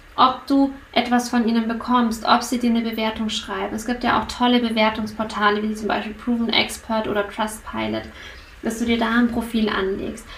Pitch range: 210-245 Hz